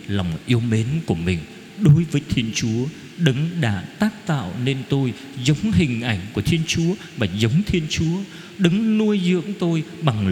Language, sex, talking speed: Vietnamese, male, 175 wpm